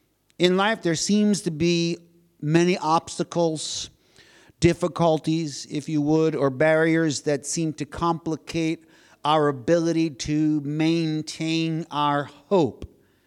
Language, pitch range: English, 145-180 Hz